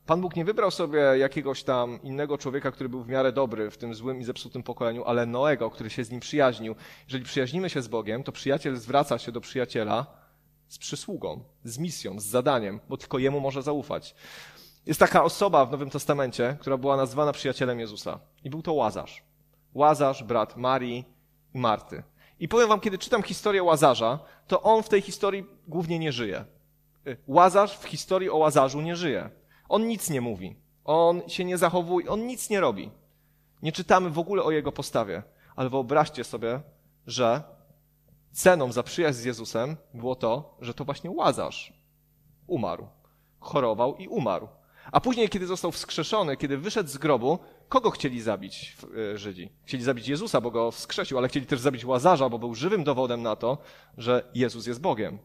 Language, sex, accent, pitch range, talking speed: Polish, male, native, 125-160 Hz, 175 wpm